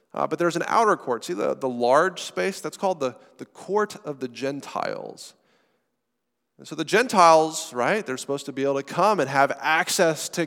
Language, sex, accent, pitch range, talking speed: English, male, American, 130-175 Hz, 200 wpm